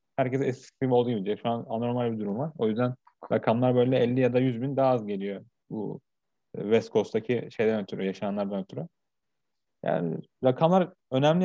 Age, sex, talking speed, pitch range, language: 30-49, male, 175 wpm, 115-135 Hz, Turkish